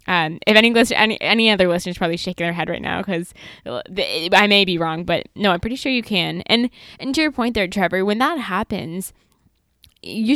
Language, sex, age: English, female, 10-29